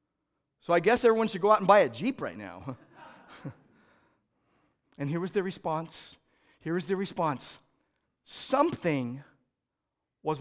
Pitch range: 155-260 Hz